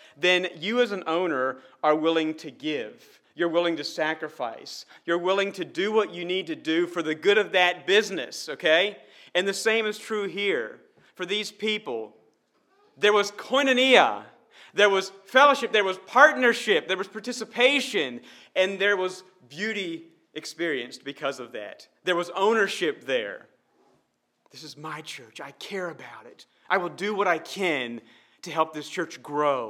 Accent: American